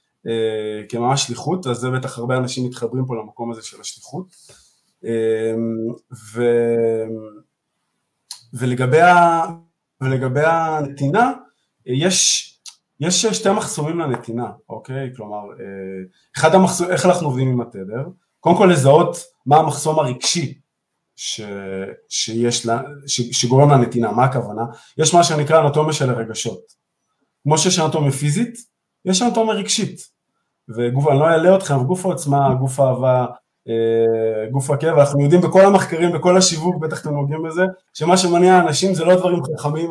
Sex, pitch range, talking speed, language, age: male, 125-165 Hz, 135 wpm, Hebrew, 20-39